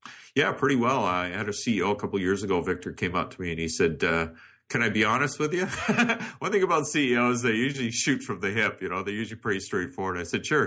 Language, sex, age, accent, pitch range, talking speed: English, male, 50-69, American, 95-135 Hz, 265 wpm